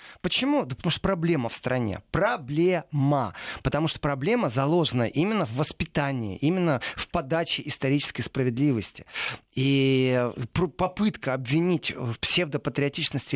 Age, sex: 30-49, male